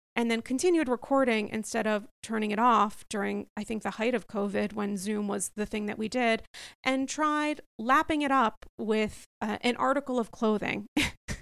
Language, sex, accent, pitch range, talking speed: English, female, American, 210-270 Hz, 185 wpm